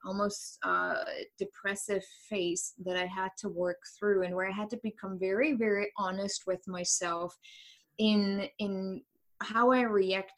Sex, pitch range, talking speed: female, 180-205 Hz, 150 wpm